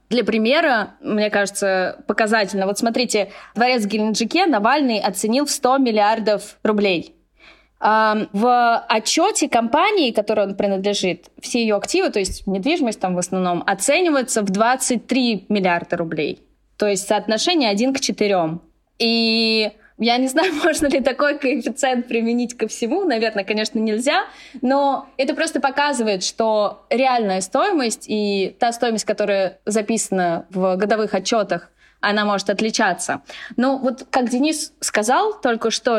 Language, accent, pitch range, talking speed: Russian, native, 205-260 Hz, 135 wpm